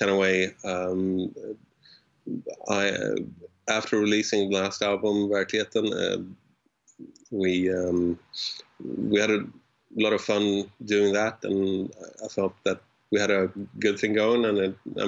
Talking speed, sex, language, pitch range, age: 145 wpm, male, English, 95-105 Hz, 30-49